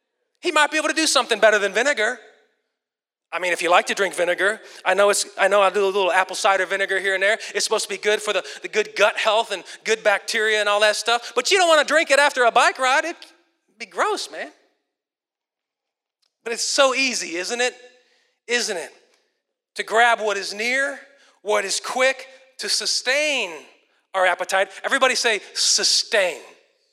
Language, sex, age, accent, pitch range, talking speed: English, male, 30-49, American, 205-275 Hz, 200 wpm